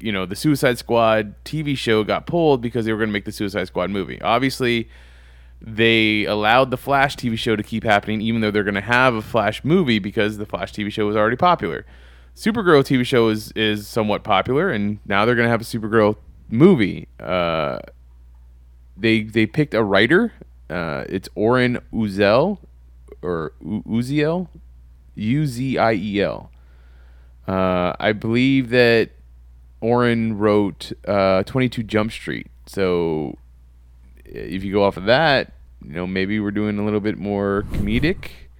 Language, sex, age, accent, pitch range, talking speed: English, male, 20-39, American, 90-120 Hz, 165 wpm